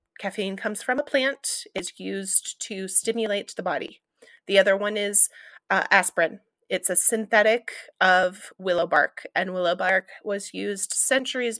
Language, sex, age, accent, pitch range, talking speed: English, female, 30-49, American, 195-245 Hz, 150 wpm